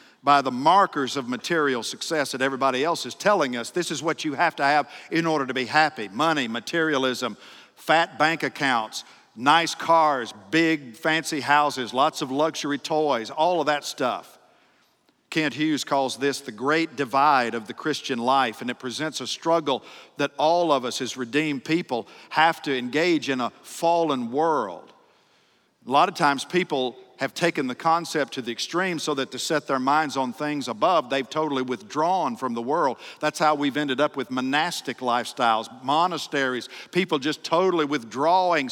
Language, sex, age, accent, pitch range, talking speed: English, male, 50-69, American, 135-160 Hz, 175 wpm